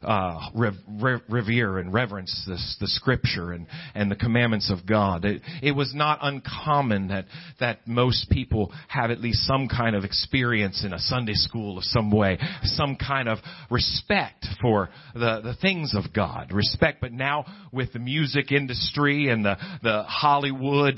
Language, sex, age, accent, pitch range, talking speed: English, male, 40-59, American, 110-145 Hz, 170 wpm